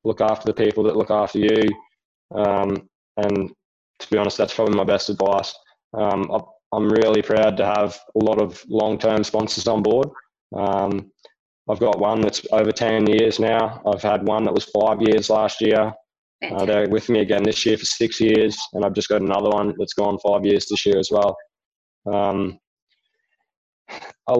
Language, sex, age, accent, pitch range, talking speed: English, male, 20-39, Australian, 105-115 Hz, 185 wpm